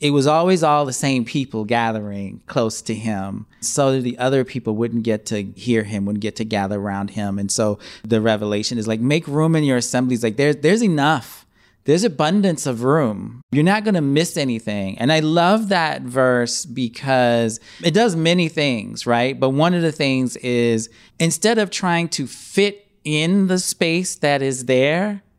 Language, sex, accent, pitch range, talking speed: English, male, American, 120-185 Hz, 190 wpm